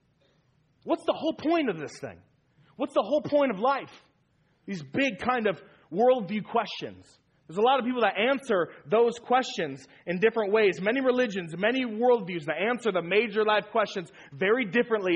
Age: 30-49